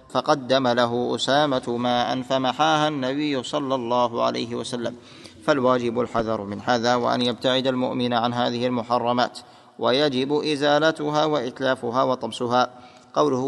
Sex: male